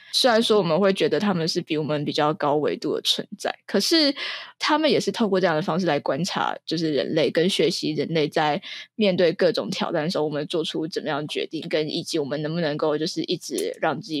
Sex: female